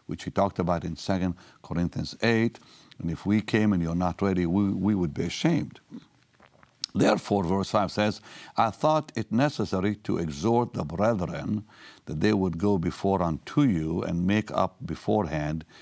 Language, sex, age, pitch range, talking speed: English, male, 60-79, 85-110 Hz, 165 wpm